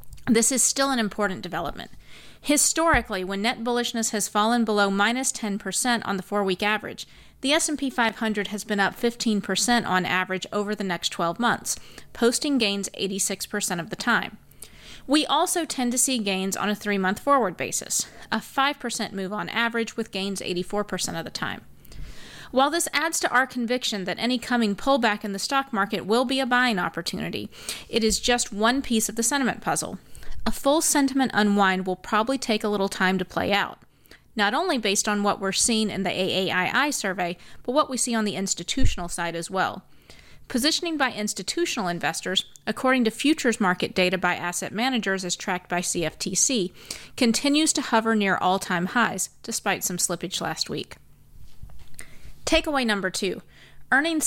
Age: 30-49